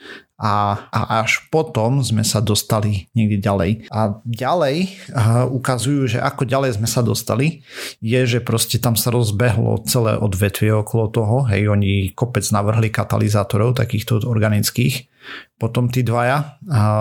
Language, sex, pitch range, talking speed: Slovak, male, 110-130 Hz, 135 wpm